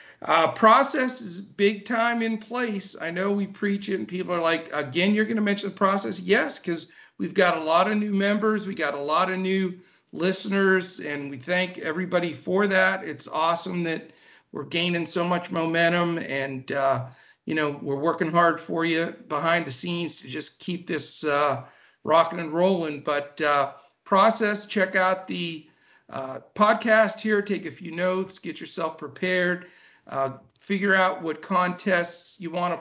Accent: American